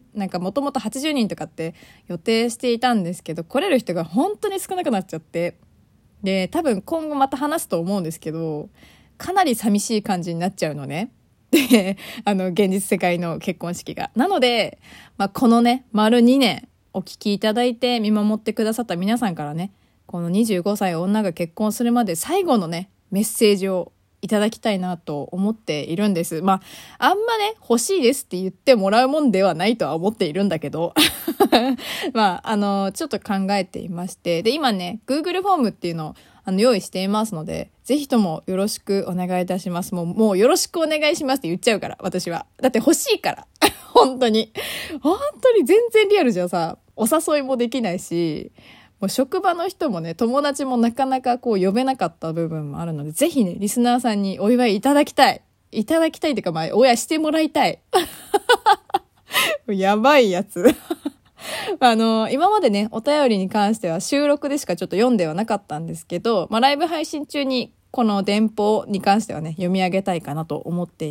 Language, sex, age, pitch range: Japanese, female, 20-39, 180-265 Hz